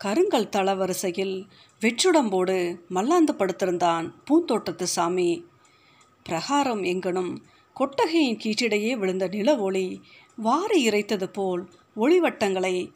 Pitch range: 180-240 Hz